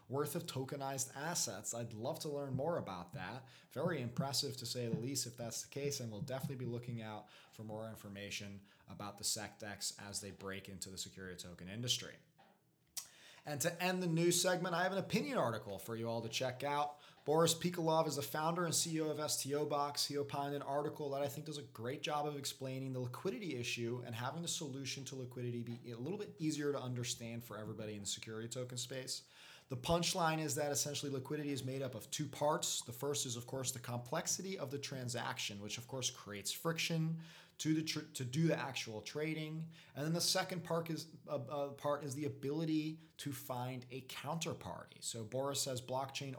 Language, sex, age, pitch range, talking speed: English, male, 20-39, 120-155 Hz, 200 wpm